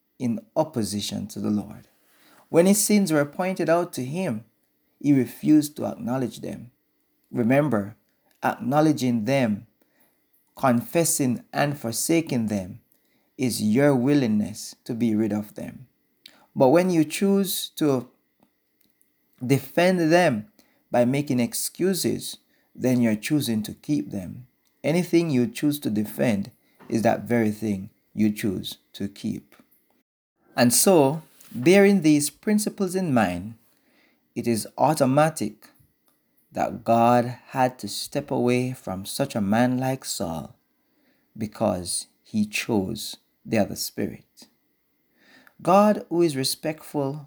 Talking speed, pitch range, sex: 120 wpm, 115-165 Hz, male